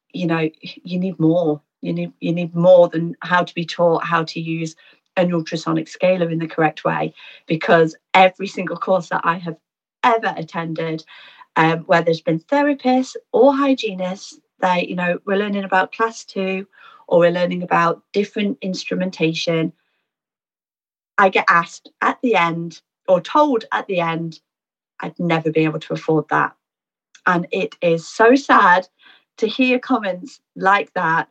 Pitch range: 165-195 Hz